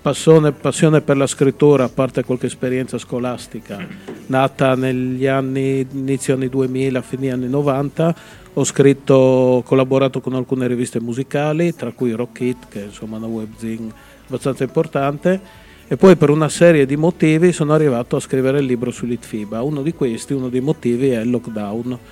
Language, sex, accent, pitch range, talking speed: Italian, male, native, 120-140 Hz, 170 wpm